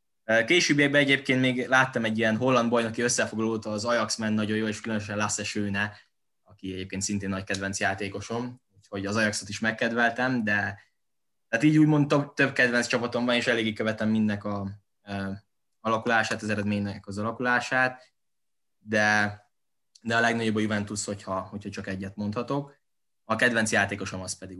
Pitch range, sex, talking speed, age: 100-115 Hz, male, 150 wpm, 10-29